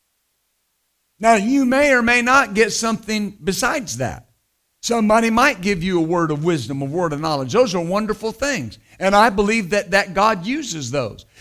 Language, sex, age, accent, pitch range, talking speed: English, male, 50-69, American, 175-245 Hz, 180 wpm